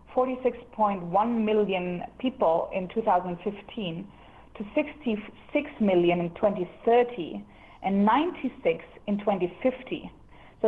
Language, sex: English, female